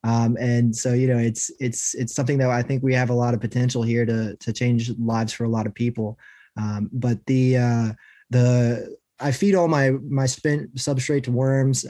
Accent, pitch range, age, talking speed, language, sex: American, 120-140 Hz, 20-39, 210 wpm, English, male